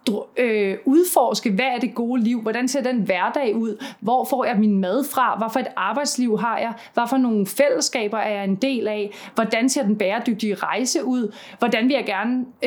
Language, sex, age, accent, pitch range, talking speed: Danish, female, 30-49, native, 215-270 Hz, 190 wpm